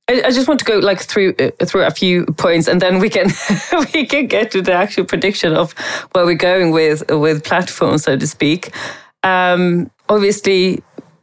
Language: English